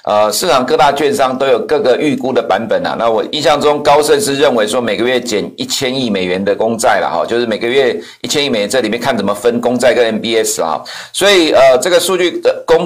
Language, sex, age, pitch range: Chinese, male, 50-69, 110-145 Hz